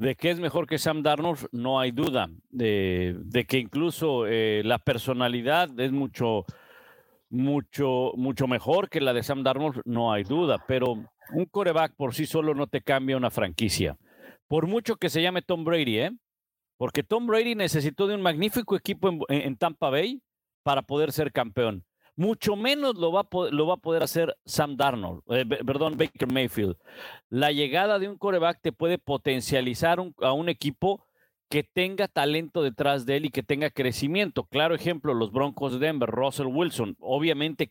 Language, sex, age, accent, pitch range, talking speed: Spanish, male, 50-69, Mexican, 130-170 Hz, 180 wpm